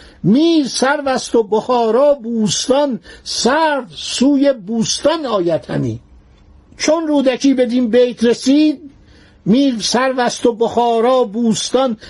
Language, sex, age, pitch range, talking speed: Persian, male, 60-79, 185-255 Hz, 100 wpm